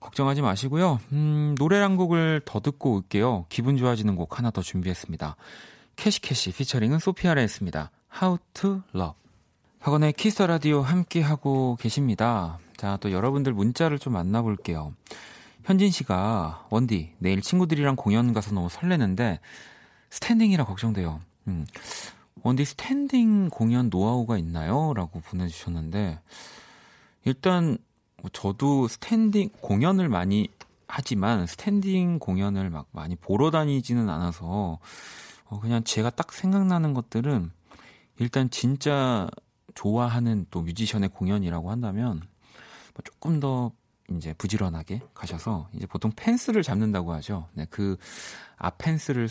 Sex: male